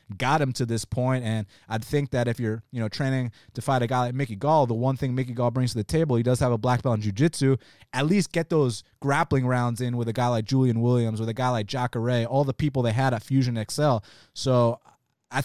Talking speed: 255 wpm